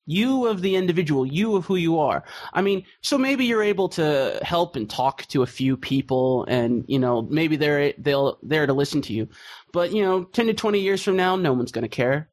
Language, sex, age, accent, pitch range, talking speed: English, male, 20-39, American, 135-190 Hz, 235 wpm